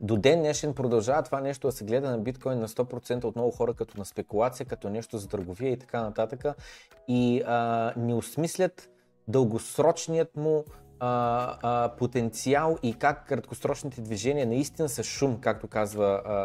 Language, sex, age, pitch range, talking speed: Bulgarian, male, 20-39, 115-155 Hz, 165 wpm